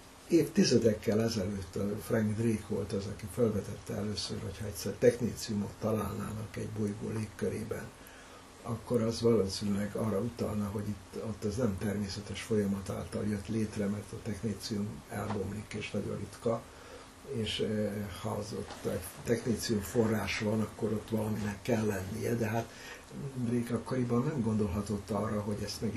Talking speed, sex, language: 140 wpm, male, Hungarian